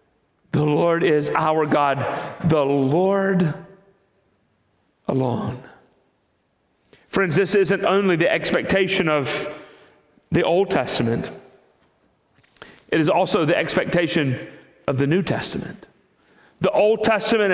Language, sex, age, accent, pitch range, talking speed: English, male, 40-59, American, 150-210 Hz, 105 wpm